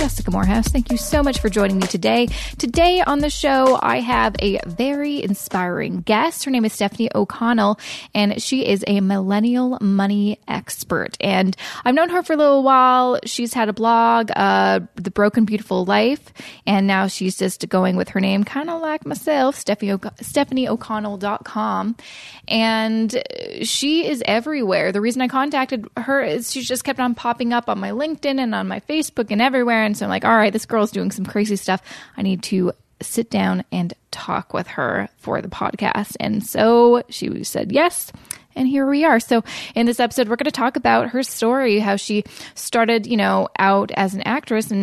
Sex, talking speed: female, 185 wpm